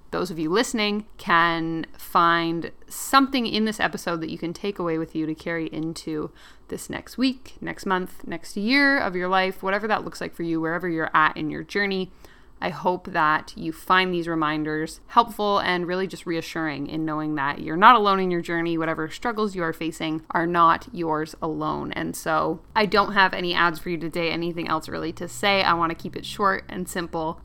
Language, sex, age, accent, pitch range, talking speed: English, female, 20-39, American, 160-200 Hz, 210 wpm